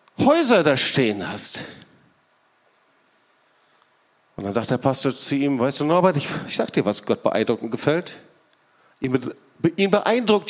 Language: German